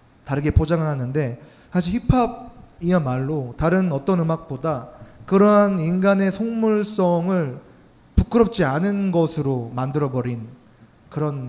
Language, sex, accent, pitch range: Korean, male, native, 135-185 Hz